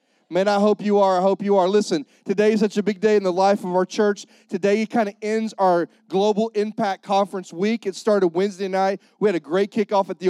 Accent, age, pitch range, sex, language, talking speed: American, 30-49, 185-210 Hz, male, English, 250 wpm